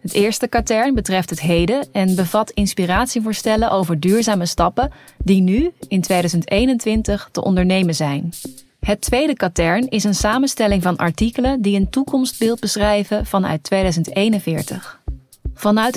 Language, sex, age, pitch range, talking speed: Dutch, female, 20-39, 180-215 Hz, 130 wpm